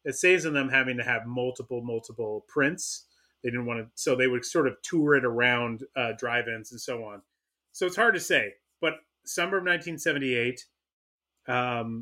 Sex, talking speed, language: male, 175 wpm, English